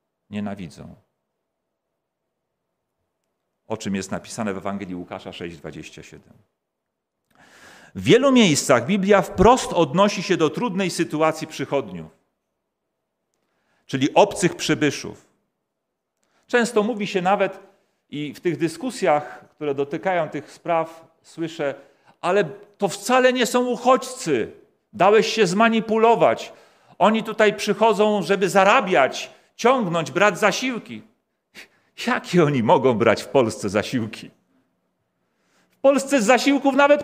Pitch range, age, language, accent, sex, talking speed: 140-220 Hz, 40-59, Polish, native, male, 105 wpm